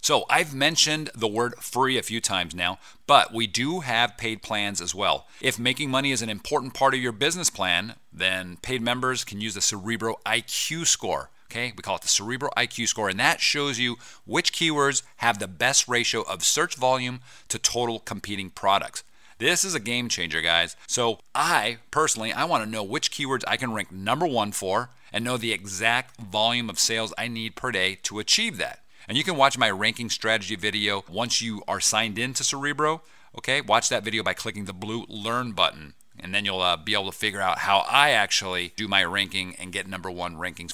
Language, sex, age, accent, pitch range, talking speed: English, male, 40-59, American, 100-125 Hz, 210 wpm